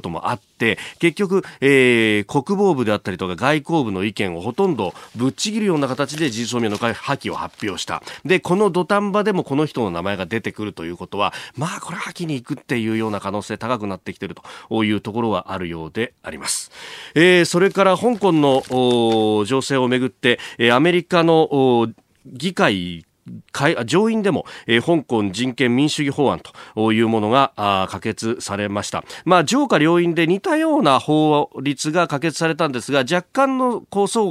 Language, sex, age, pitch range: Japanese, male, 40-59, 105-165 Hz